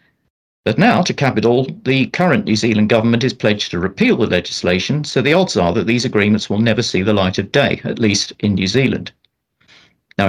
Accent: British